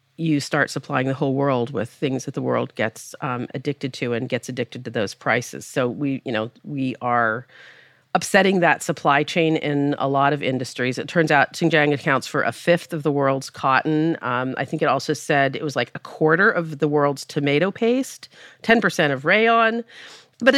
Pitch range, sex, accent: 145-180 Hz, female, American